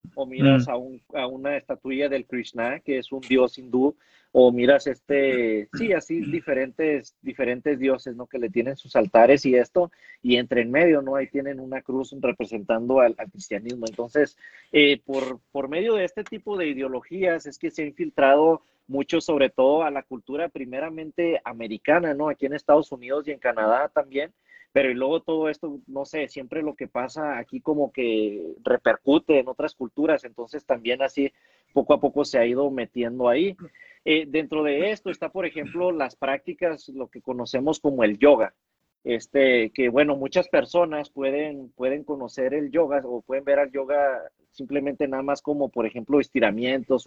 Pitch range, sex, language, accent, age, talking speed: 125-150 Hz, male, English, Mexican, 40-59, 180 wpm